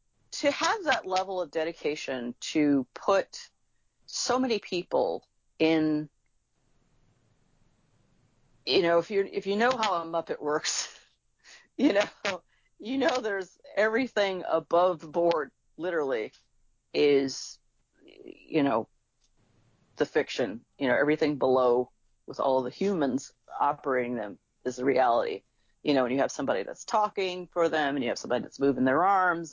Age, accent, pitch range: 40-59, American, 140-205 Hz